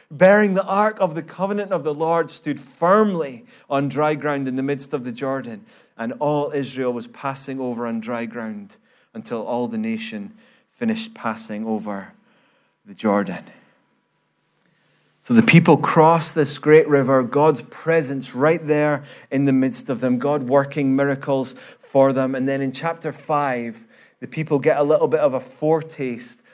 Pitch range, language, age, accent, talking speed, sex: 140-185 Hz, English, 30-49, British, 165 wpm, male